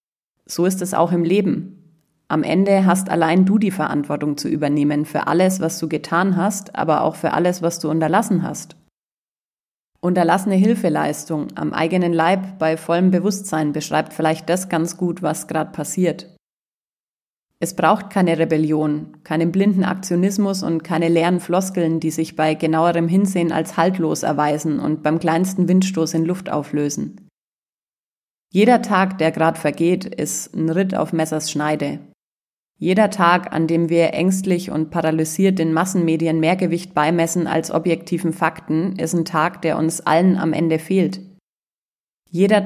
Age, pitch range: 30-49, 160-180 Hz